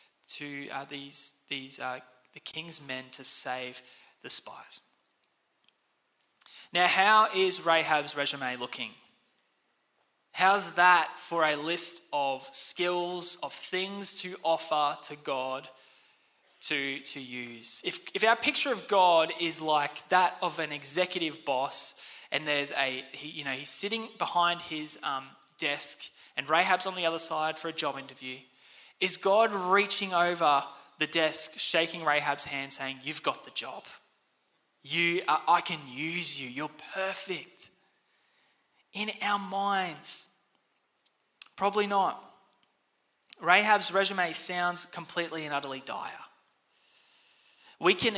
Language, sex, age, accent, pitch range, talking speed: English, male, 20-39, Australian, 145-185 Hz, 130 wpm